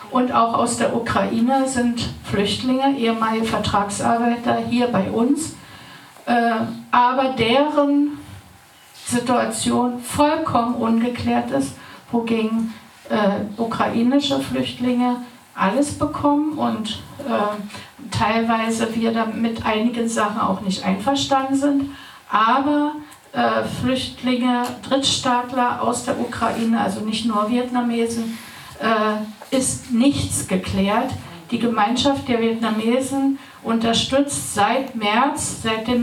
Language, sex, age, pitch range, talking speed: German, female, 60-79, 220-255 Hz, 90 wpm